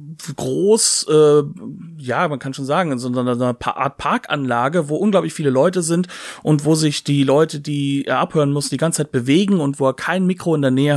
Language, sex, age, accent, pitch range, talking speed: German, male, 40-59, German, 130-160 Hz, 220 wpm